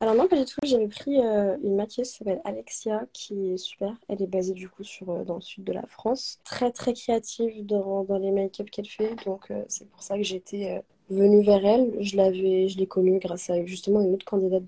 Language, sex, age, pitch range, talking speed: French, female, 20-39, 185-205 Hz, 245 wpm